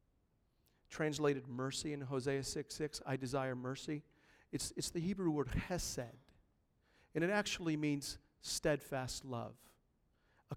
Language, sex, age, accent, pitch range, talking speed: English, male, 40-59, American, 130-170 Hz, 125 wpm